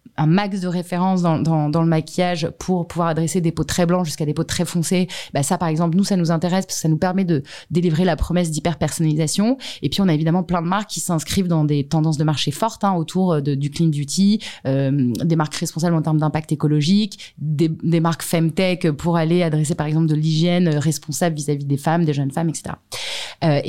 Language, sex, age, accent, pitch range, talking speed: French, female, 20-39, French, 160-200 Hz, 225 wpm